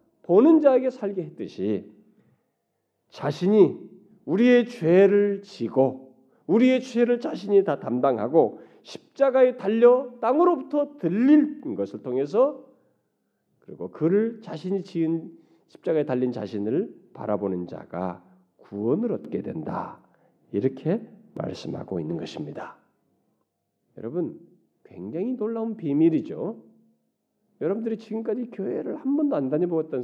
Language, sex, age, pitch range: Korean, male, 40-59, 150-245 Hz